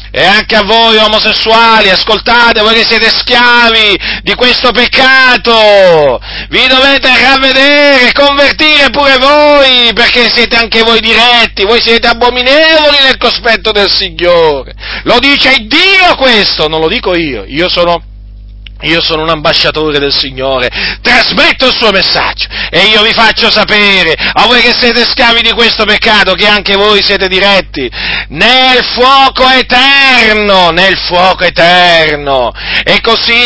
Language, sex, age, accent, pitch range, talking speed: Italian, male, 40-59, native, 200-260 Hz, 140 wpm